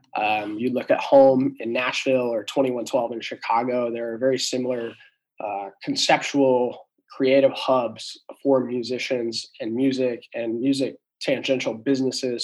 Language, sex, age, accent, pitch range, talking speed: English, male, 20-39, American, 115-130 Hz, 130 wpm